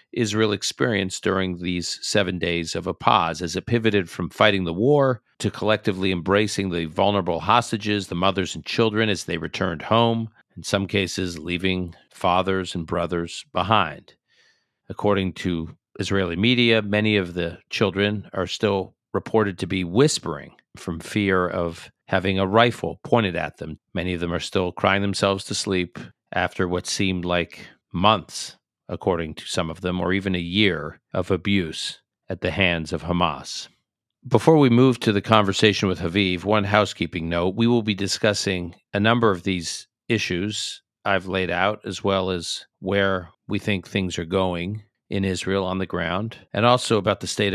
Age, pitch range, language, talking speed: 50-69, 90-105 Hz, English, 170 wpm